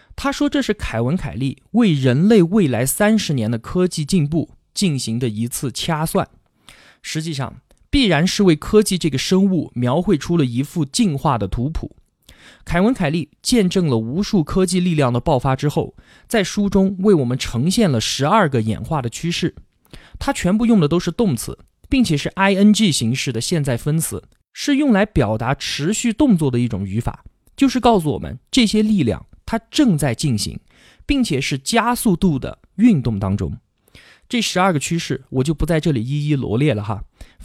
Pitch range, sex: 130-200 Hz, male